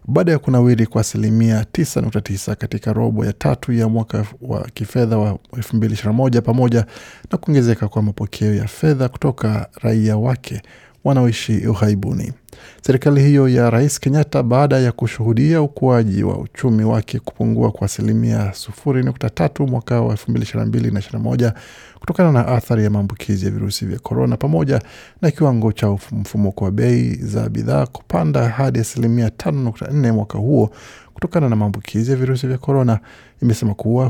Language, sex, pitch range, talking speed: Swahili, male, 110-130 Hz, 140 wpm